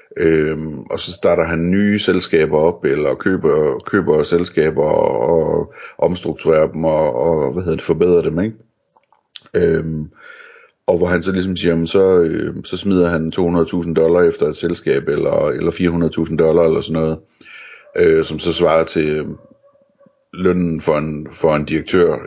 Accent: native